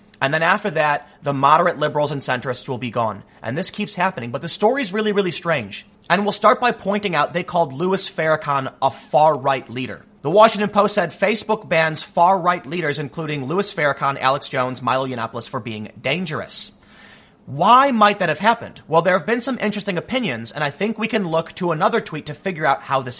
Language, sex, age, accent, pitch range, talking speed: English, male, 30-49, American, 145-210 Hz, 205 wpm